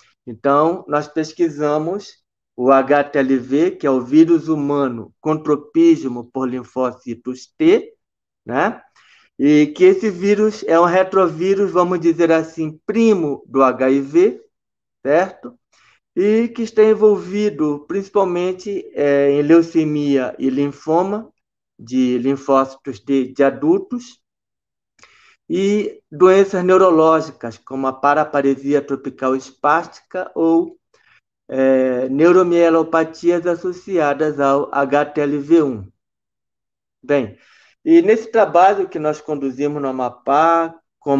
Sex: male